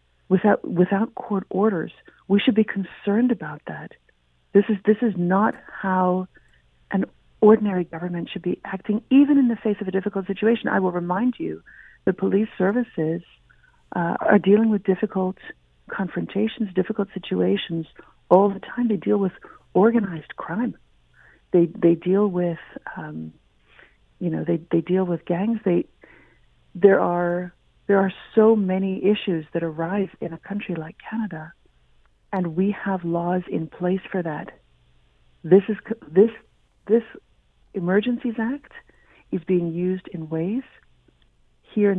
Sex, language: female, English